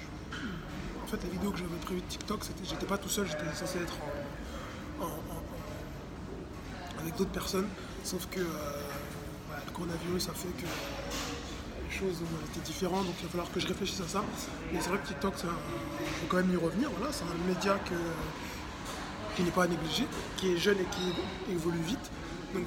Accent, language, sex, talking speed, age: French, French, male, 195 wpm, 20-39